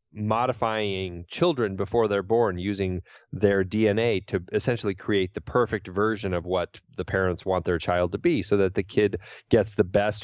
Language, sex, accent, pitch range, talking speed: English, male, American, 95-120 Hz, 175 wpm